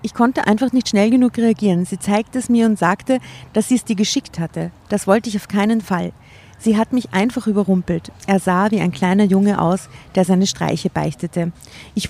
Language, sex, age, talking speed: German, female, 50-69, 210 wpm